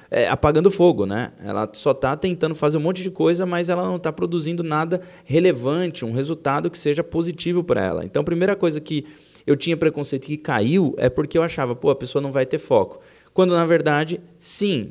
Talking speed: 205 wpm